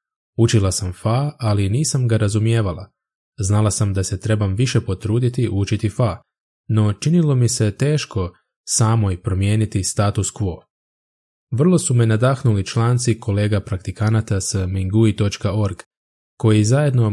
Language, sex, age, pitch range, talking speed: Croatian, male, 20-39, 100-120 Hz, 130 wpm